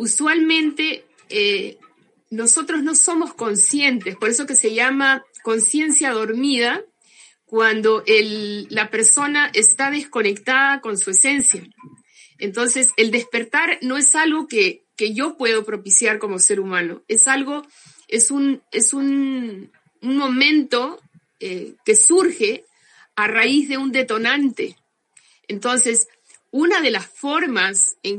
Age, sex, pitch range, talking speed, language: 50-69, female, 215-290 Hz, 125 wpm, Spanish